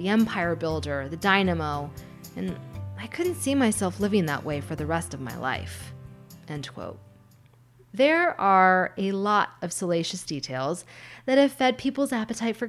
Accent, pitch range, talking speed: American, 140-220 Hz, 160 wpm